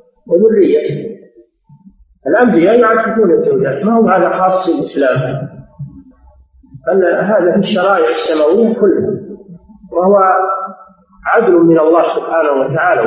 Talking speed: 95 wpm